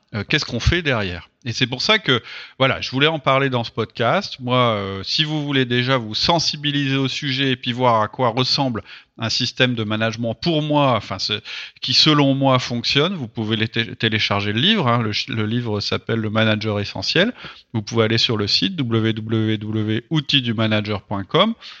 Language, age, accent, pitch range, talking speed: French, 30-49, French, 110-140 Hz, 190 wpm